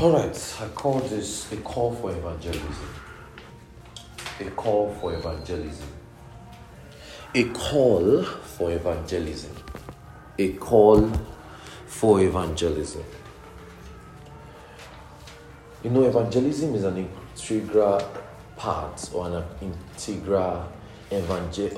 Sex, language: male, English